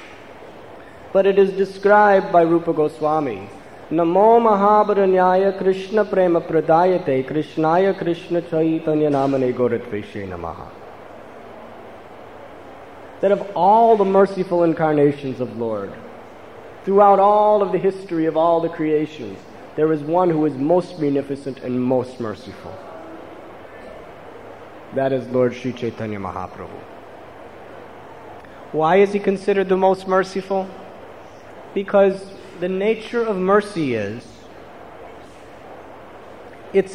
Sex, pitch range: male, 145-195 Hz